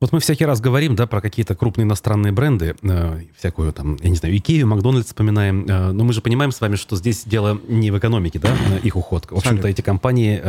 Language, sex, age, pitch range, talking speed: Russian, male, 30-49, 90-115 Hz, 230 wpm